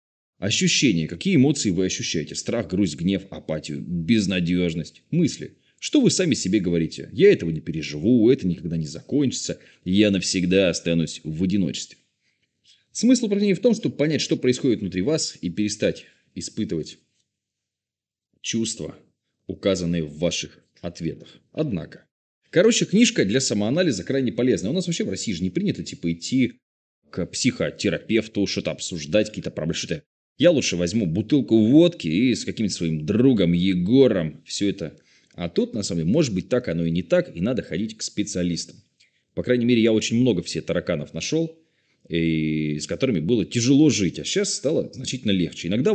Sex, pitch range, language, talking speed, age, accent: male, 85-125 Hz, Russian, 160 wpm, 20-39, native